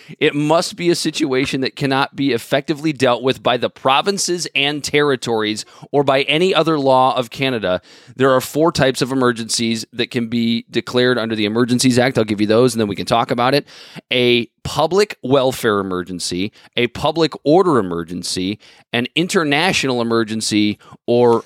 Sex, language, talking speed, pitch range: male, English, 170 wpm, 120-150 Hz